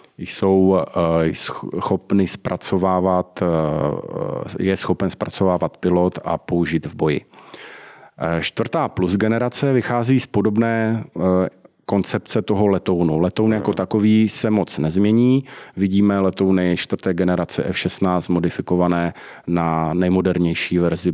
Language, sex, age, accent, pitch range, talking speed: Czech, male, 40-59, native, 85-100 Hz, 100 wpm